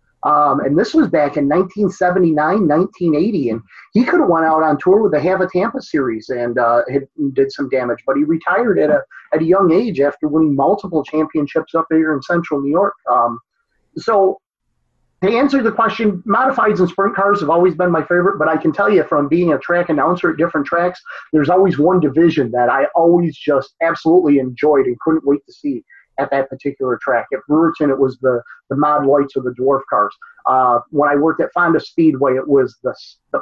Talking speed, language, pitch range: 210 wpm, English, 140-185 Hz